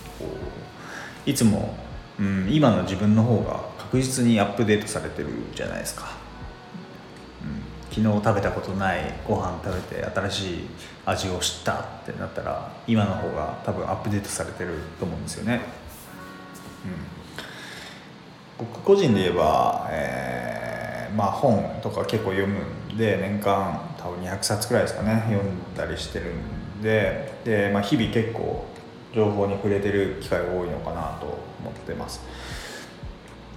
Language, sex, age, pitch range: Japanese, male, 20-39, 95-110 Hz